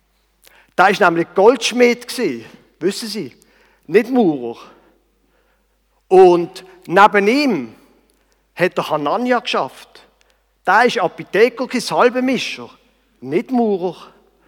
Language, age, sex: German, 50-69, male